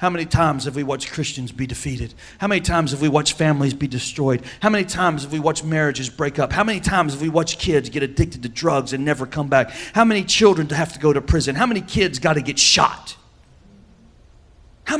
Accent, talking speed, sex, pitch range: American, 235 wpm, male, 120-165 Hz